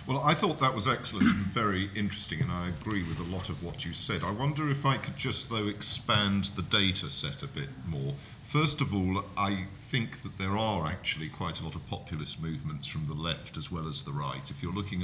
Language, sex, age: English, male, 50-69